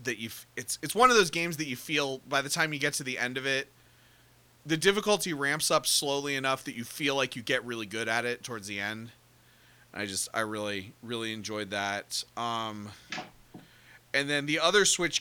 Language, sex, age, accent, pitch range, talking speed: English, male, 30-49, American, 120-155 Hz, 215 wpm